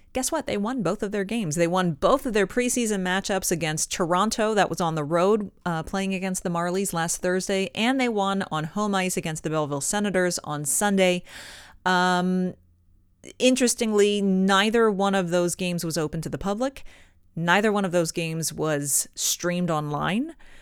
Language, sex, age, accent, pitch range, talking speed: English, female, 30-49, American, 160-195 Hz, 180 wpm